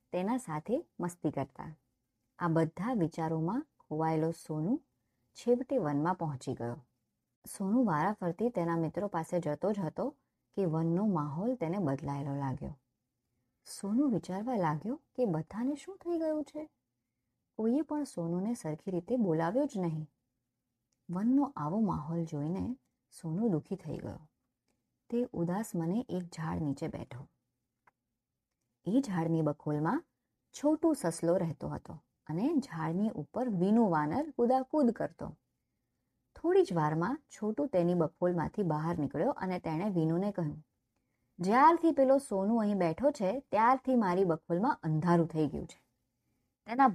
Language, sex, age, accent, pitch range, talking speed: Gujarati, male, 30-49, native, 155-240 Hz, 85 wpm